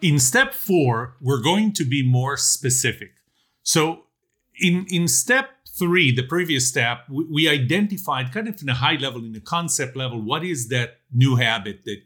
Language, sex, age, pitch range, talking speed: English, male, 40-59, 110-150 Hz, 180 wpm